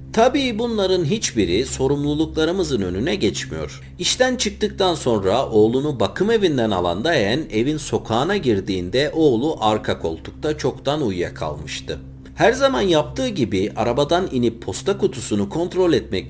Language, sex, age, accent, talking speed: Turkish, male, 50-69, native, 120 wpm